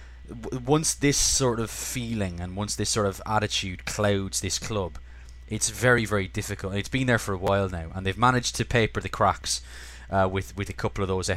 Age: 20-39